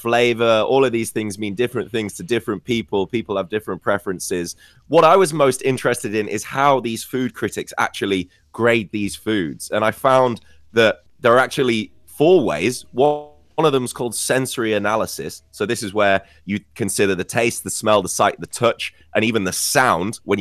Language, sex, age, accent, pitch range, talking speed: English, male, 20-39, British, 95-120 Hz, 190 wpm